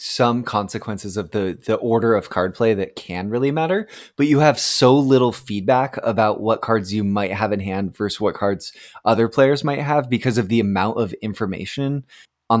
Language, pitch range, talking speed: English, 100-125 Hz, 195 wpm